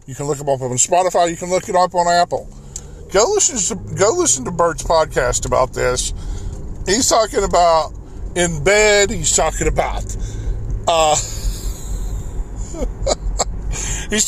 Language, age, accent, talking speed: English, 20-39, American, 145 wpm